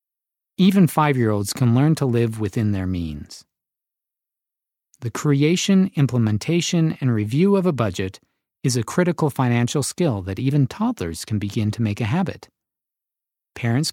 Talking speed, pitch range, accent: 140 wpm, 110-150 Hz, American